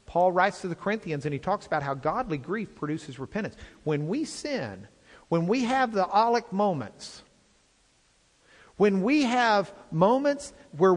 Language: English